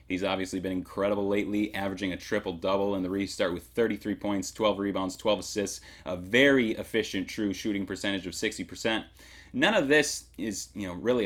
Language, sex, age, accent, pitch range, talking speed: English, male, 30-49, American, 100-130 Hz, 165 wpm